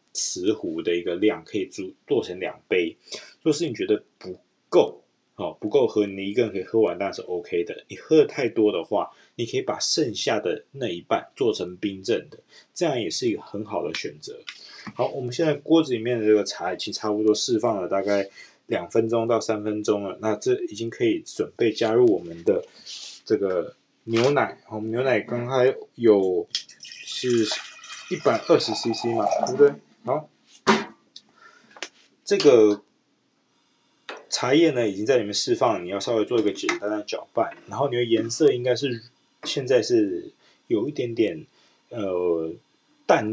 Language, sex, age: Chinese, male, 20-39